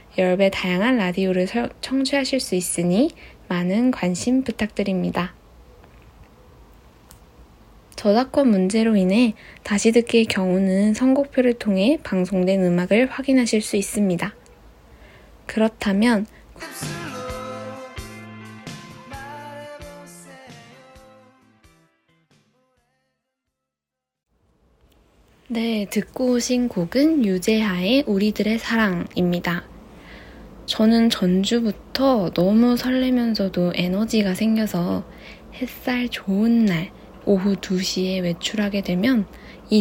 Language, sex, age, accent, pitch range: Korean, female, 20-39, native, 180-235 Hz